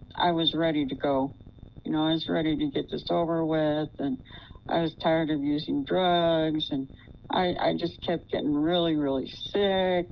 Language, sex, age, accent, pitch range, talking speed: English, female, 60-79, American, 120-160 Hz, 185 wpm